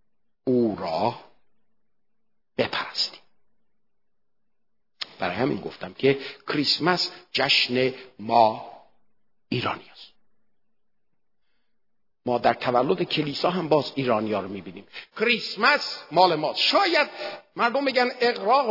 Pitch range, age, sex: 145-240 Hz, 50-69, male